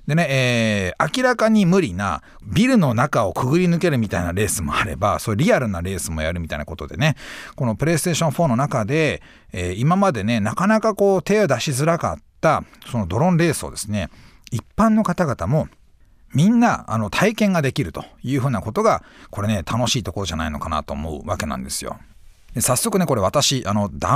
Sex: male